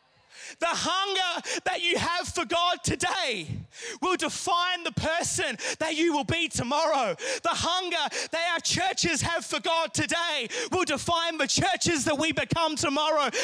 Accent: Australian